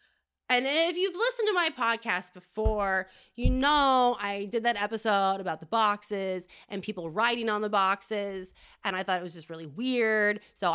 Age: 30-49